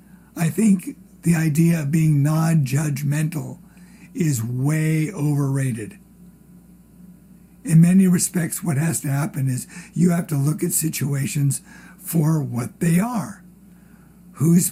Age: 60-79